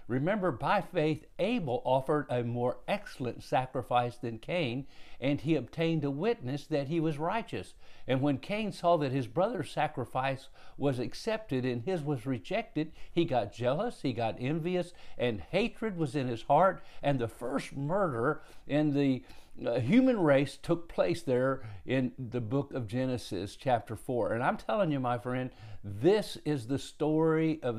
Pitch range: 120-160 Hz